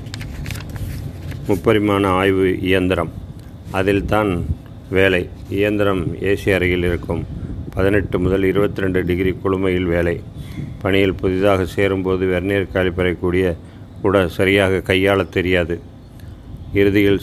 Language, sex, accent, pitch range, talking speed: Tamil, male, native, 90-100 Hz, 85 wpm